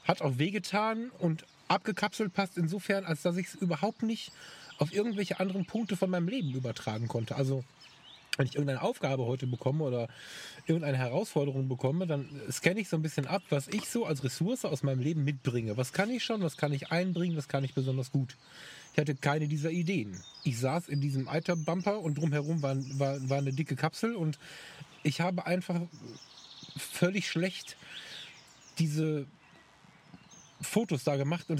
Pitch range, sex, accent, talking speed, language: 140-175 Hz, male, German, 175 wpm, German